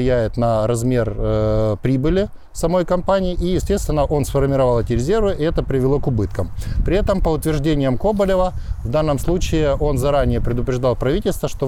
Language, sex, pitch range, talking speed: Ukrainian, male, 115-145 Hz, 155 wpm